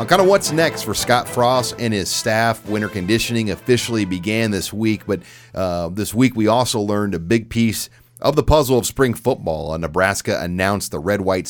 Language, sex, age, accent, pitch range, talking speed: English, male, 40-59, American, 95-115 Hz, 190 wpm